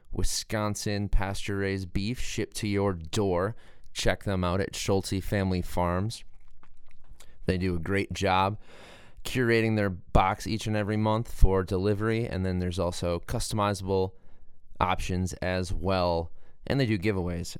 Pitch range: 90-105 Hz